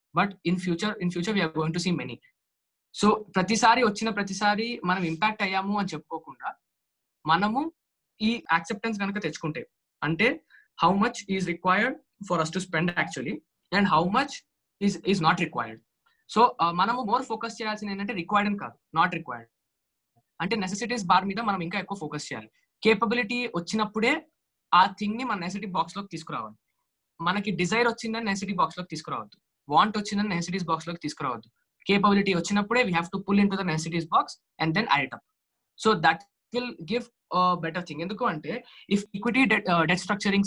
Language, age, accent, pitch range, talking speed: Telugu, 20-39, native, 170-215 Hz, 165 wpm